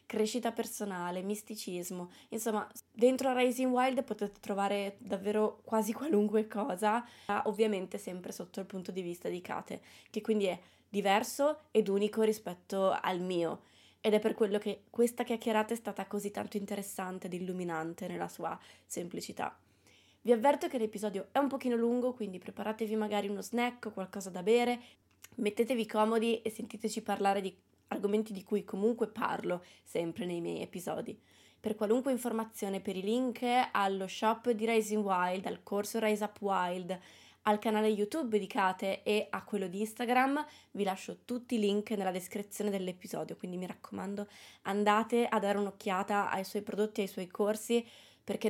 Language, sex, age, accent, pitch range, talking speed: Italian, female, 20-39, native, 195-230 Hz, 160 wpm